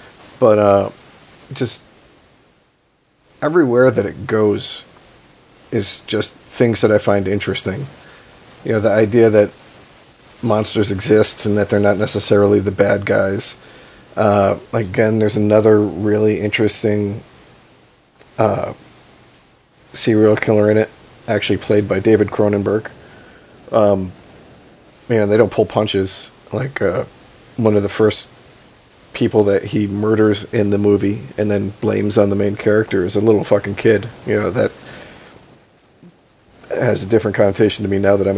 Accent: American